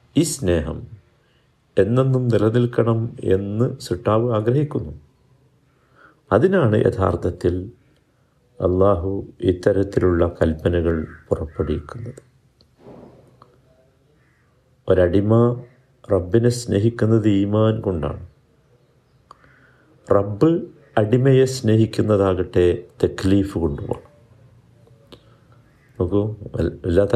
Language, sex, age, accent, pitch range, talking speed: Malayalam, male, 50-69, native, 95-125 Hz, 55 wpm